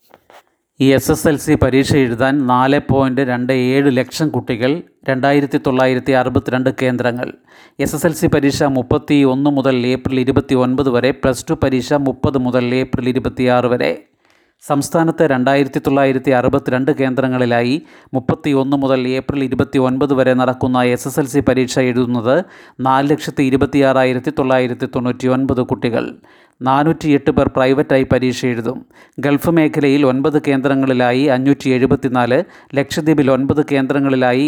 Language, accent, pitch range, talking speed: Malayalam, native, 130-145 Hz, 115 wpm